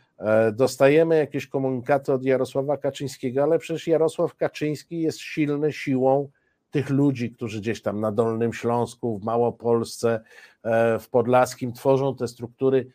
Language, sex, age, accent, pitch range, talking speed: Polish, male, 50-69, native, 115-145 Hz, 130 wpm